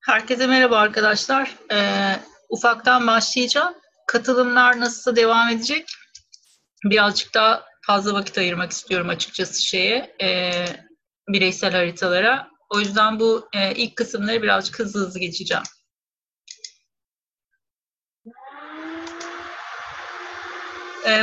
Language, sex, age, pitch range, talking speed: Turkish, female, 40-59, 200-255 Hz, 90 wpm